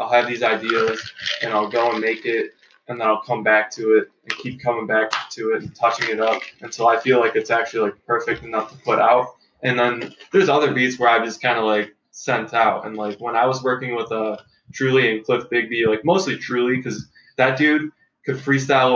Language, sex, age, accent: English, male, 10-29, American